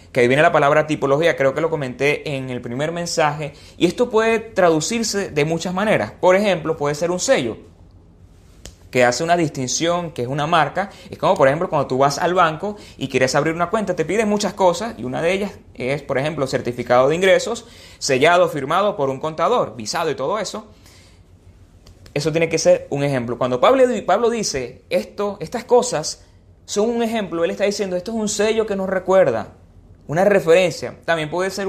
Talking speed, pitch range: 190 wpm, 130-195 Hz